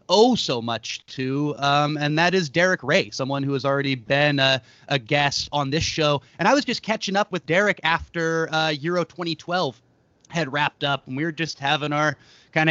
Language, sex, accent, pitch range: English, male, American, 145-195 Hz